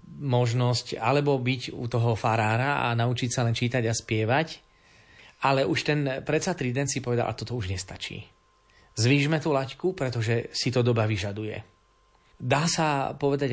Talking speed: 155 wpm